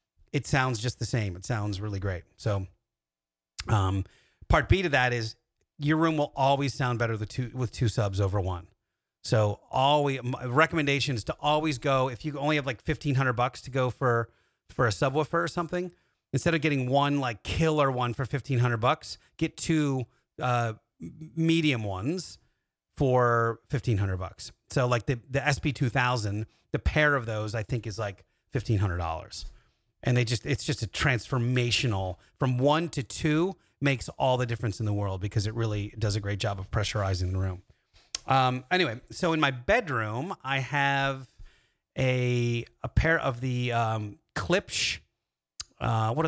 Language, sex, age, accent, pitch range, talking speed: English, male, 30-49, American, 105-140 Hz, 180 wpm